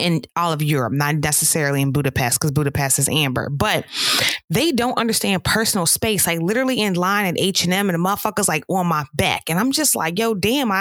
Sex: female